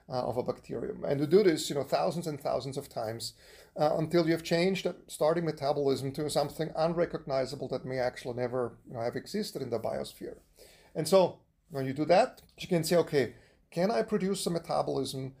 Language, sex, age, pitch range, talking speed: English, male, 40-59, 135-165 Hz, 190 wpm